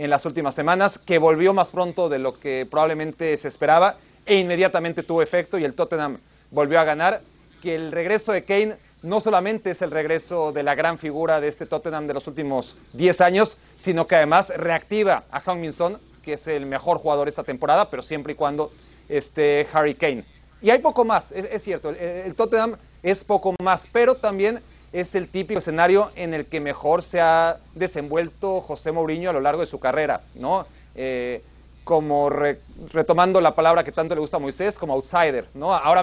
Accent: Mexican